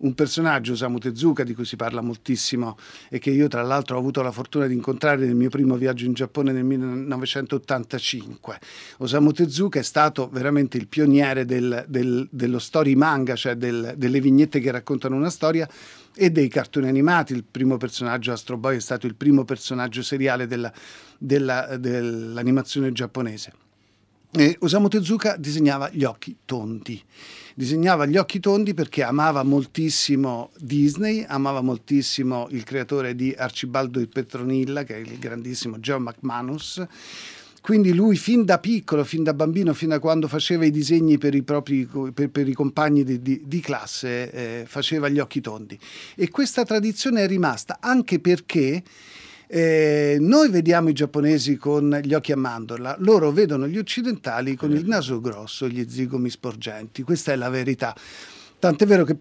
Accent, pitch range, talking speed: native, 125-155 Hz, 160 wpm